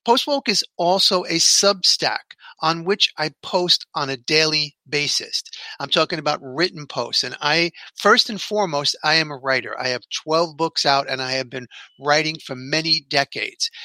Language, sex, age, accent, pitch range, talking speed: English, male, 40-59, American, 150-205 Hz, 175 wpm